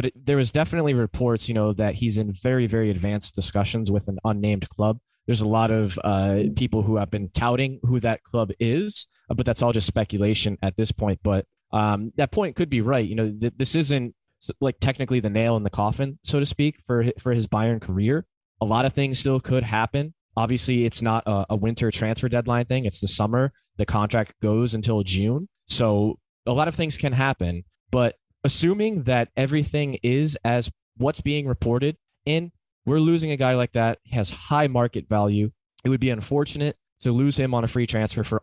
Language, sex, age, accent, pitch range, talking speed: English, male, 20-39, American, 105-135 Hz, 205 wpm